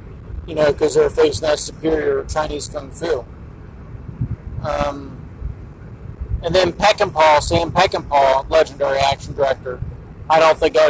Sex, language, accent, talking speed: male, English, American, 125 wpm